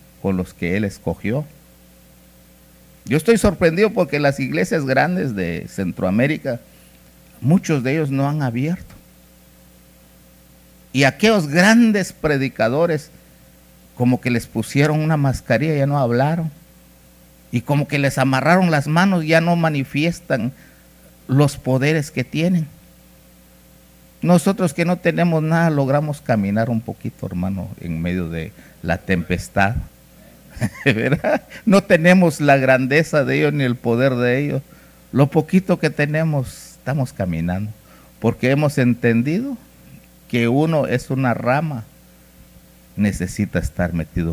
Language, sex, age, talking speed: Spanish, male, 50-69, 120 wpm